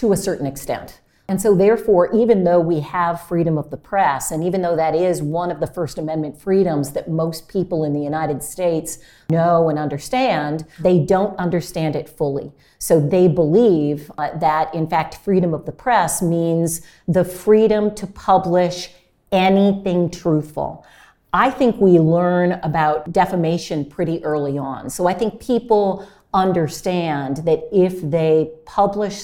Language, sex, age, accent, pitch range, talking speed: English, female, 50-69, American, 160-190 Hz, 160 wpm